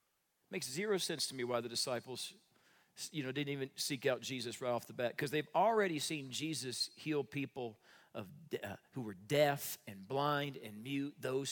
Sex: male